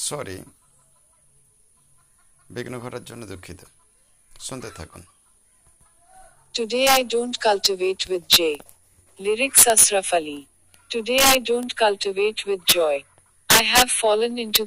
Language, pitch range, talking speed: Bengali, 145-235 Hz, 80 wpm